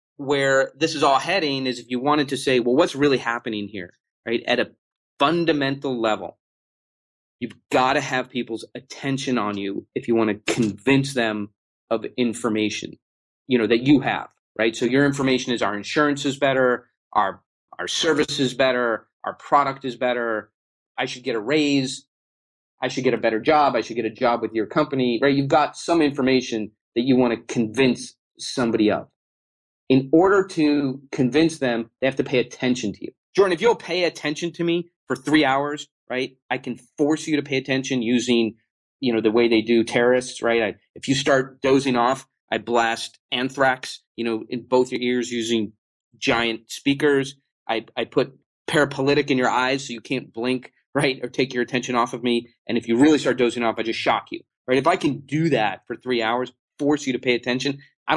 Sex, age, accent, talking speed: male, 30-49, American, 200 wpm